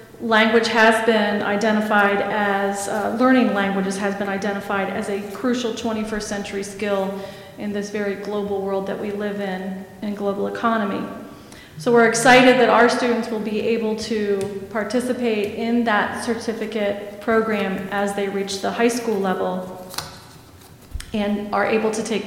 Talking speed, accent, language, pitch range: 150 wpm, American, English, 205-235 Hz